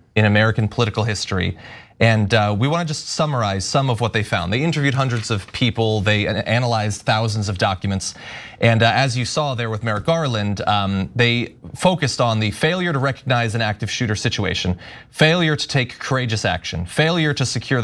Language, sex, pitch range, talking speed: English, male, 105-135 Hz, 175 wpm